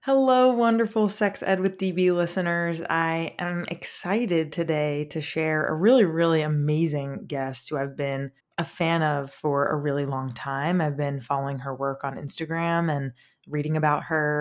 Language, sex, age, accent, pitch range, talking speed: English, female, 20-39, American, 145-175 Hz, 165 wpm